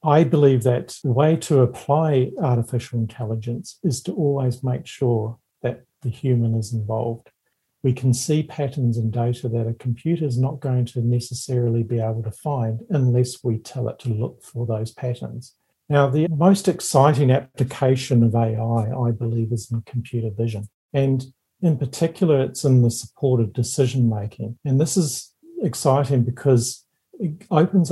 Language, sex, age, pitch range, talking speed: English, male, 50-69, 115-135 Hz, 160 wpm